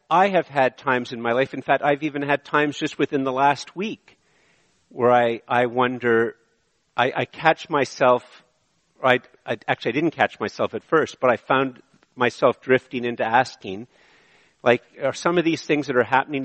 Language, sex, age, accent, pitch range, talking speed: English, male, 50-69, American, 120-140 Hz, 180 wpm